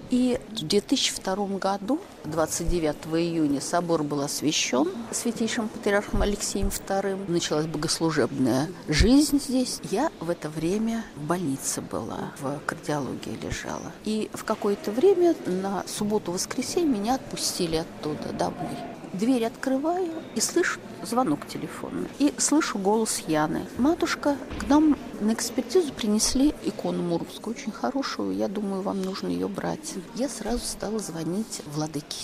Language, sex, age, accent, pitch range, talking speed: Russian, female, 40-59, native, 170-255 Hz, 125 wpm